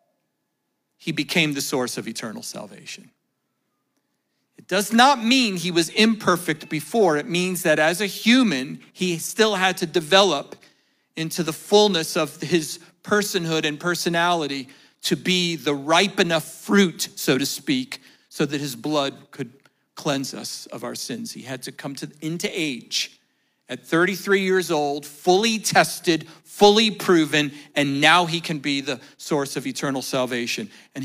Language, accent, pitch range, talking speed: English, American, 145-185 Hz, 155 wpm